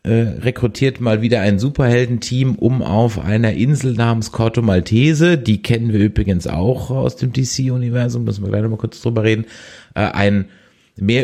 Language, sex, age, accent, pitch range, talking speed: German, male, 30-49, German, 100-125 Hz, 160 wpm